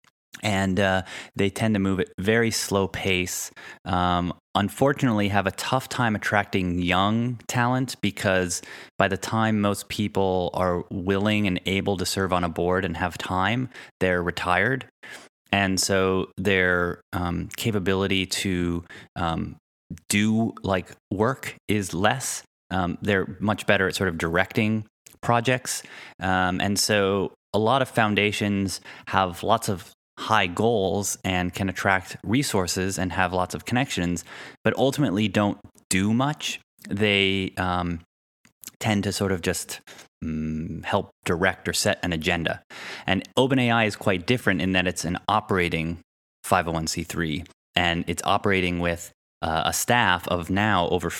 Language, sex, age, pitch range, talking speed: English, male, 30-49, 90-105 Hz, 140 wpm